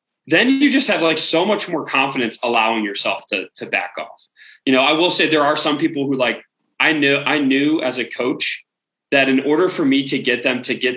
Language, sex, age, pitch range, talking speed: English, male, 20-39, 120-160 Hz, 235 wpm